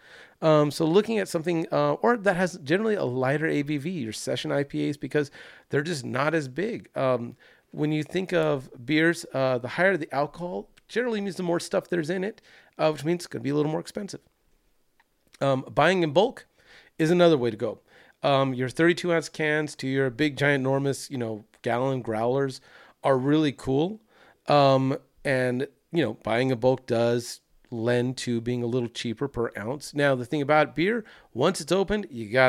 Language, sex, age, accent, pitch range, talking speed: English, male, 40-59, American, 125-160 Hz, 190 wpm